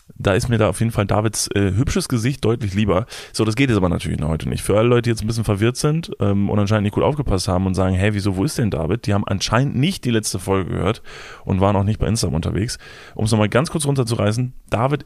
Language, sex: German, male